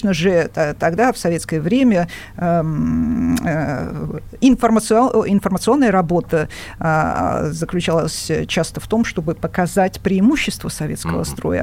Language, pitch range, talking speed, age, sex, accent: Russian, 160-205 Hz, 85 wpm, 50-69, female, native